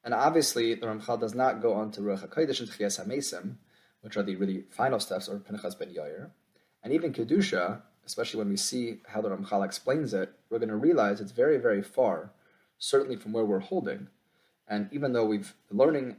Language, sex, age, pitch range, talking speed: English, male, 30-49, 105-130 Hz, 205 wpm